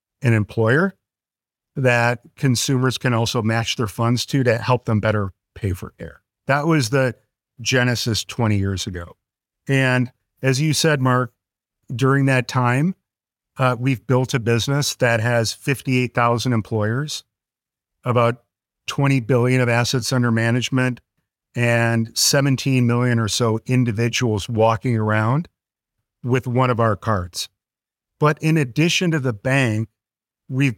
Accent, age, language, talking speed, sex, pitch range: American, 50-69, English, 135 wpm, male, 110-130 Hz